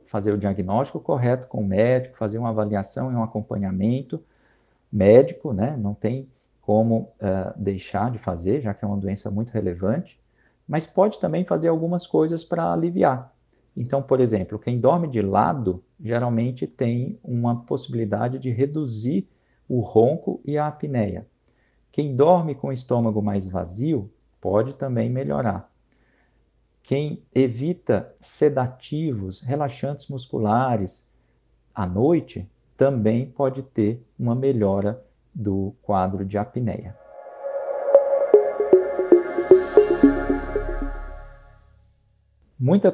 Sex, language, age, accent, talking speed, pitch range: male, Portuguese, 50-69, Brazilian, 115 wpm, 105-135 Hz